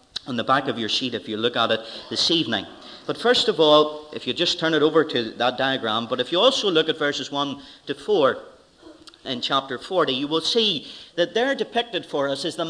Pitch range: 145-220 Hz